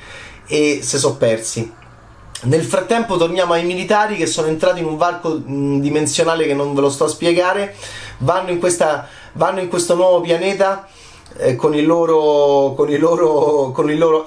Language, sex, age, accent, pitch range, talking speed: Italian, male, 30-49, native, 145-185 Hz, 175 wpm